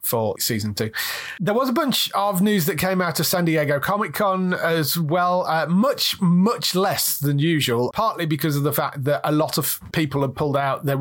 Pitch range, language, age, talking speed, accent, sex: 125-160 Hz, English, 30-49, 215 wpm, British, male